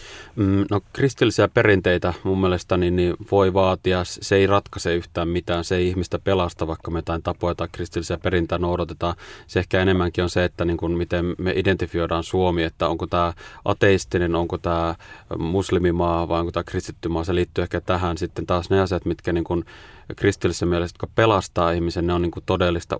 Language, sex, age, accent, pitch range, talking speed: Finnish, male, 30-49, native, 85-95 Hz, 185 wpm